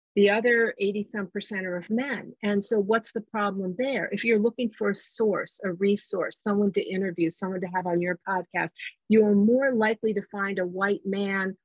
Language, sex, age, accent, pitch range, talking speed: English, female, 50-69, American, 180-215 Hz, 205 wpm